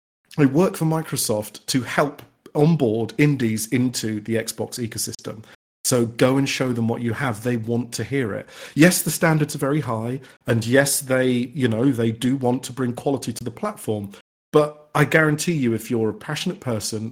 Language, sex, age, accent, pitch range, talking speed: English, male, 40-59, British, 115-145 Hz, 190 wpm